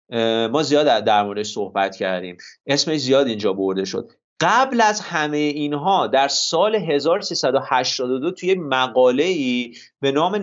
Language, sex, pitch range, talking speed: Persian, male, 130-170 Hz, 130 wpm